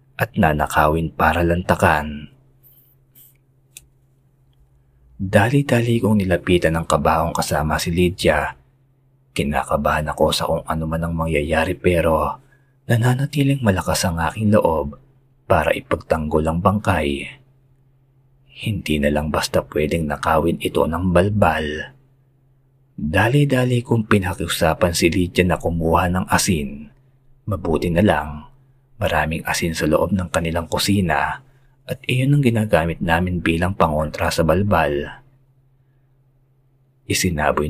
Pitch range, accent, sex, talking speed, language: 80-130 Hz, native, male, 110 wpm, Filipino